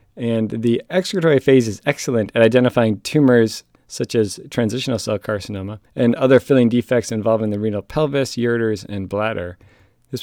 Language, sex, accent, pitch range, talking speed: English, male, American, 105-130 Hz, 155 wpm